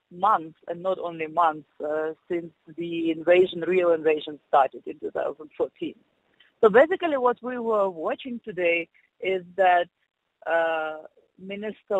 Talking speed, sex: 125 wpm, female